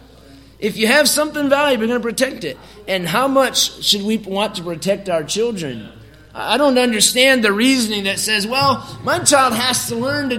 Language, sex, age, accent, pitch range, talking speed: English, male, 30-49, American, 170-240 Hz, 195 wpm